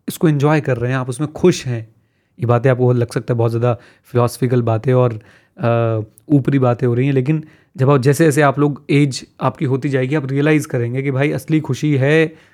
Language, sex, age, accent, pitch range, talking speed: Hindi, male, 30-49, native, 125-155 Hz, 220 wpm